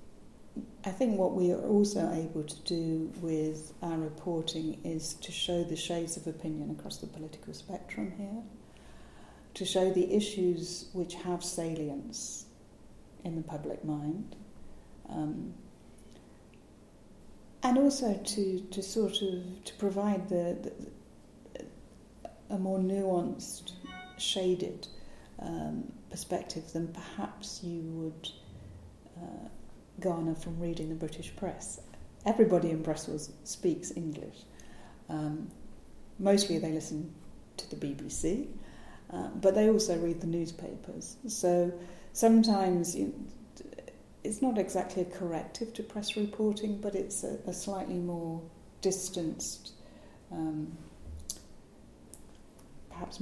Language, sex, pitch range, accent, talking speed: English, female, 160-195 Hz, British, 115 wpm